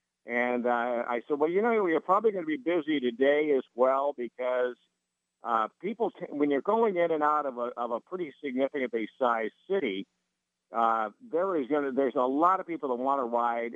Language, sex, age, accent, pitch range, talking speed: English, male, 50-69, American, 125-165 Hz, 210 wpm